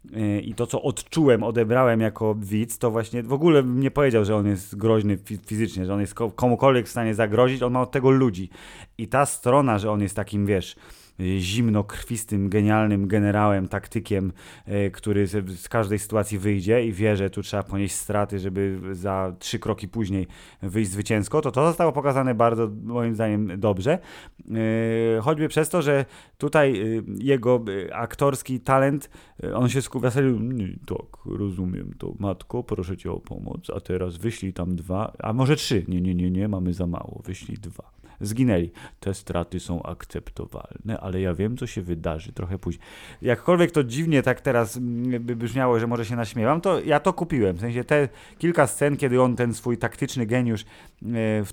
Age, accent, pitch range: 30-49, native, 100-125 Hz